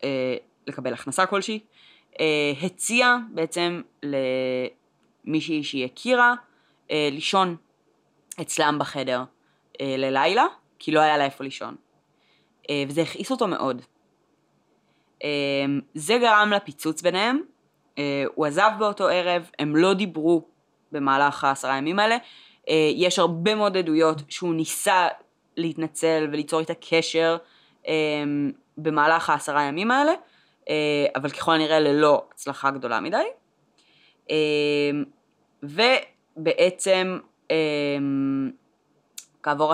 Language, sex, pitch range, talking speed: Hebrew, female, 145-190 Hz, 90 wpm